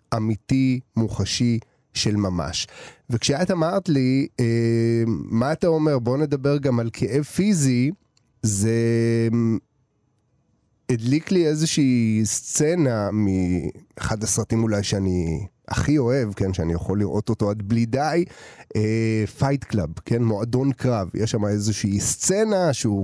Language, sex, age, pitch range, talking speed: Hebrew, male, 30-49, 110-150 Hz, 120 wpm